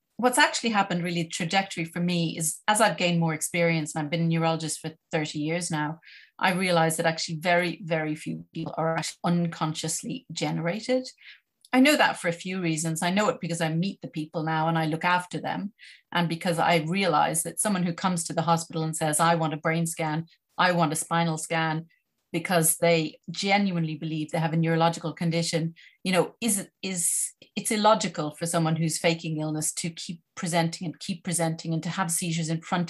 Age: 30-49